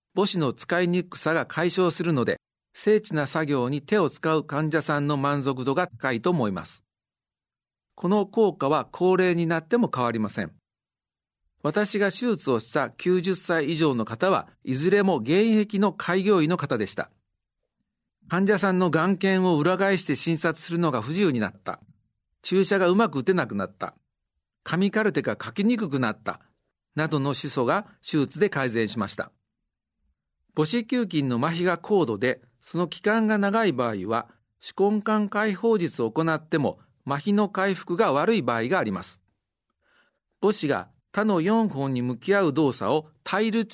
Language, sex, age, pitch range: Japanese, male, 50-69, 140-200 Hz